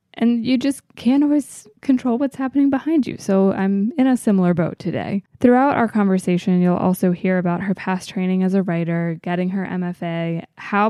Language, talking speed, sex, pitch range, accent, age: English, 185 wpm, female, 175-215 Hz, American, 20-39